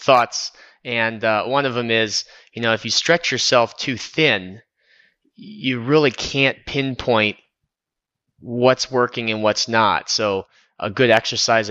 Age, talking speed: 20-39, 145 wpm